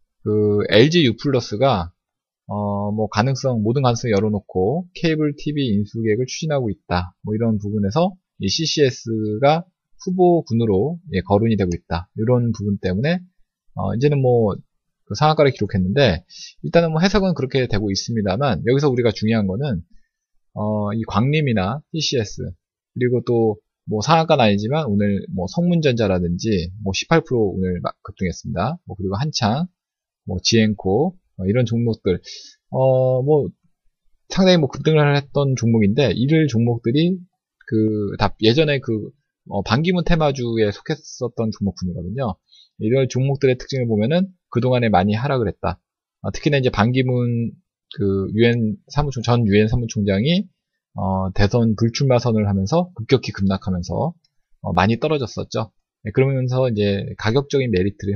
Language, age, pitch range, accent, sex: Korean, 20-39, 105-145 Hz, native, male